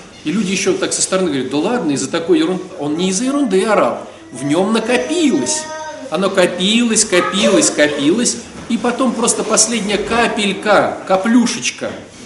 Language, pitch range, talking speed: Russian, 170-240 Hz, 150 wpm